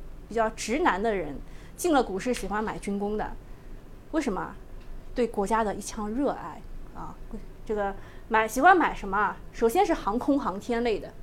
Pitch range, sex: 200-280 Hz, female